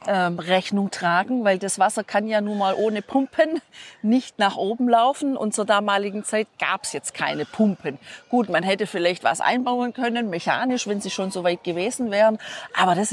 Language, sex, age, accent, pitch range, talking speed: German, female, 40-59, German, 185-225 Hz, 190 wpm